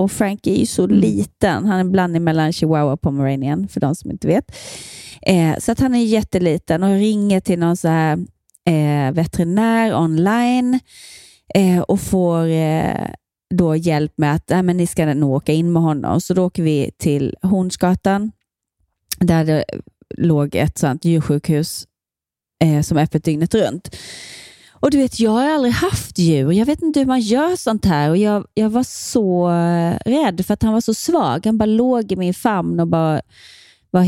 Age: 30-49